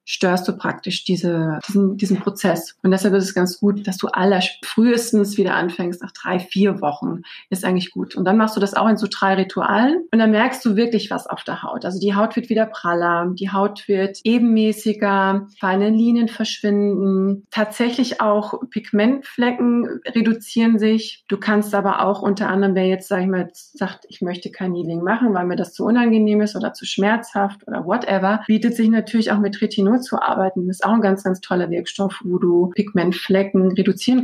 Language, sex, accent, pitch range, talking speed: German, female, German, 190-220 Hz, 195 wpm